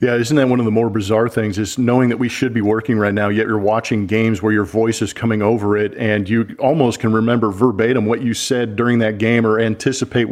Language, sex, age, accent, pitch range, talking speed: English, male, 40-59, American, 110-125 Hz, 250 wpm